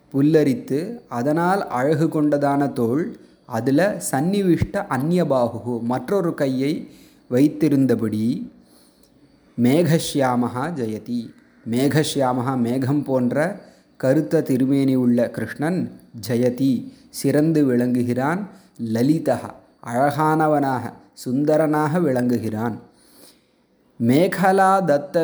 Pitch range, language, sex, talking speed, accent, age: 125-165 Hz, Tamil, male, 65 wpm, native, 30-49